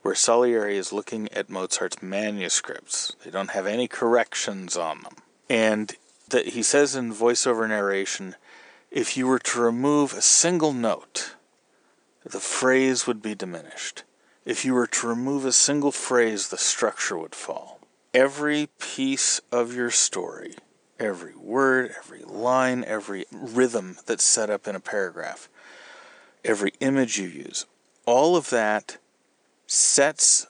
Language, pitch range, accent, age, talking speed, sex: English, 105-135 Hz, American, 40-59, 140 wpm, male